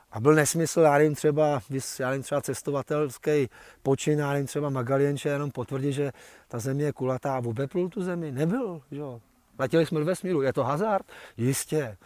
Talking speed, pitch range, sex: 180 wpm, 130-155 Hz, male